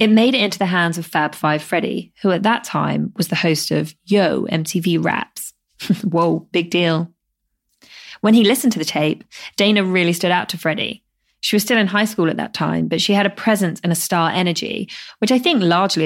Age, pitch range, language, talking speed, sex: 20-39, 160-200 Hz, English, 215 wpm, female